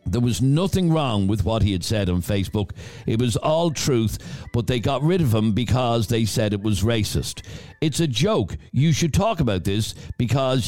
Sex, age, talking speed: male, 50-69, 200 wpm